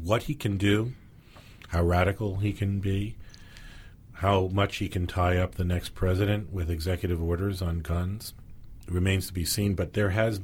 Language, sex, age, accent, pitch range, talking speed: English, male, 40-59, American, 85-100 Hz, 170 wpm